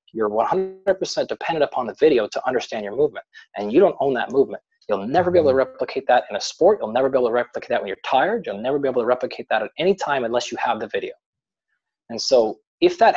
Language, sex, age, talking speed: English, male, 20-39, 250 wpm